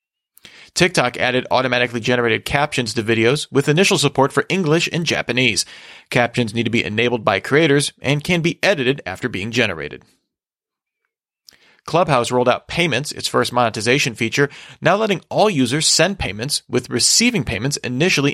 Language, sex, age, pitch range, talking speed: English, male, 30-49, 120-145 Hz, 150 wpm